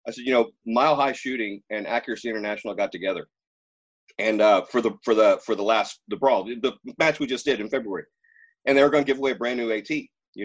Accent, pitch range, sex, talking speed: American, 110-150 Hz, male, 240 wpm